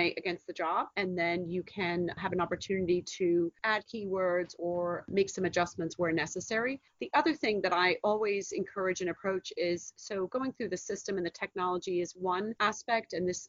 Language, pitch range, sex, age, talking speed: English, 175-195 Hz, female, 30-49, 185 wpm